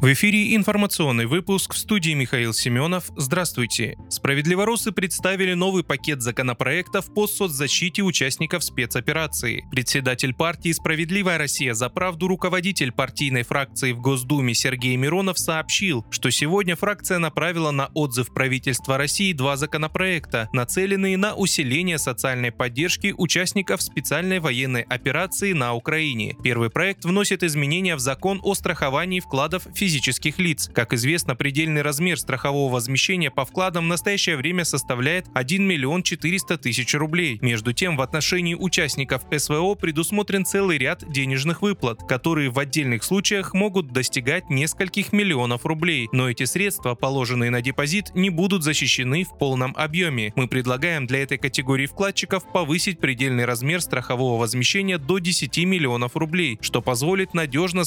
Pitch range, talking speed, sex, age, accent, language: 130-185 Hz, 135 wpm, male, 20-39, native, Russian